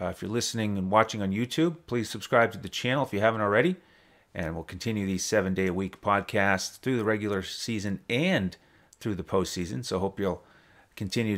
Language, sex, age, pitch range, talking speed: English, male, 30-49, 95-120 Hz, 185 wpm